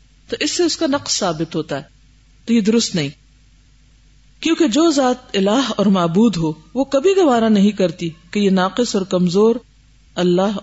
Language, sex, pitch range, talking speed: Urdu, female, 170-235 Hz, 175 wpm